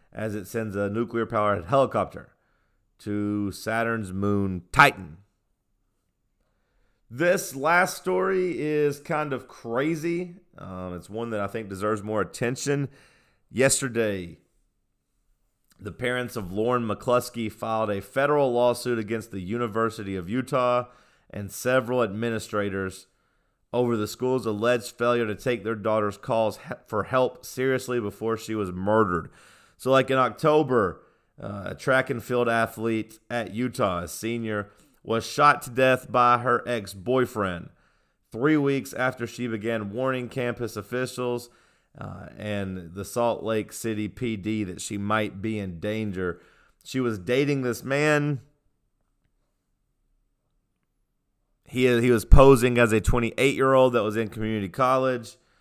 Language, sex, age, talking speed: English, male, 30-49, 130 wpm